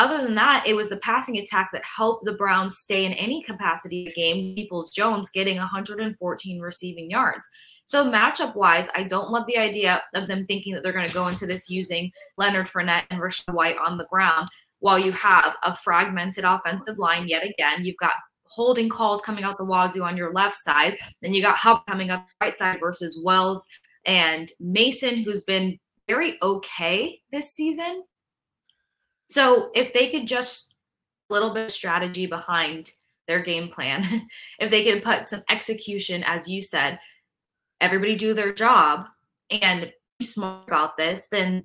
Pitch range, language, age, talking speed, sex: 175-220 Hz, English, 20-39, 175 wpm, female